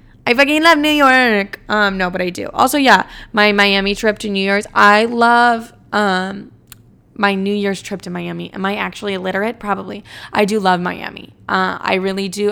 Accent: American